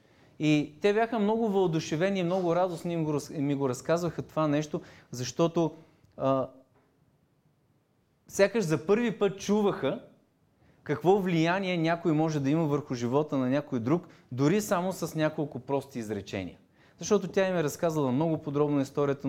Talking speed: 145 wpm